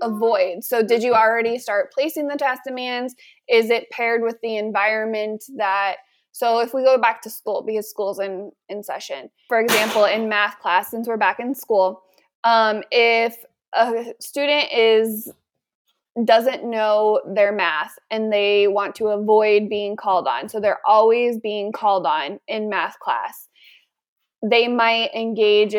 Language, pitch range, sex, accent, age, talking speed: English, 210-240 Hz, female, American, 20-39, 160 wpm